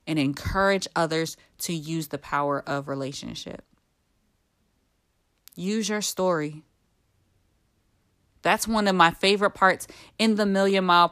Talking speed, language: 120 wpm, English